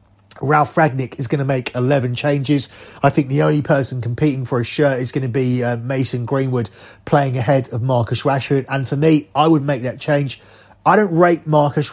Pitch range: 125-150 Hz